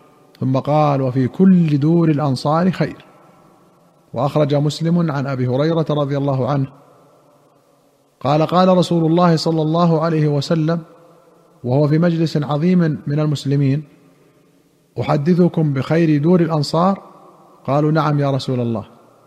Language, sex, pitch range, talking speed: Arabic, male, 140-165 Hz, 120 wpm